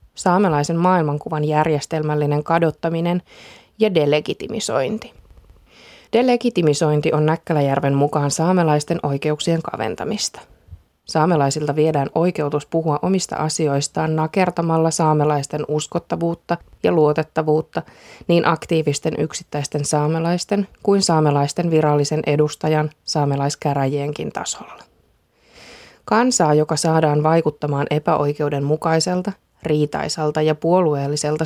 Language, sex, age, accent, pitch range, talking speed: Finnish, female, 20-39, native, 145-170 Hz, 80 wpm